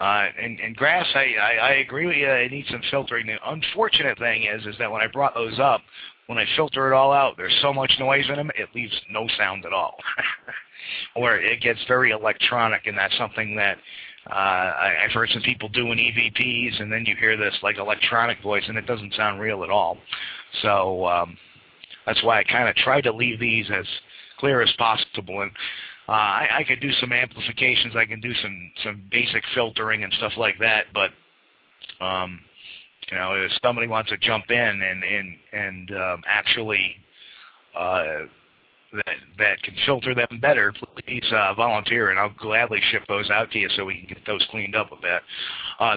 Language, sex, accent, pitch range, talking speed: English, male, American, 105-120 Hz, 200 wpm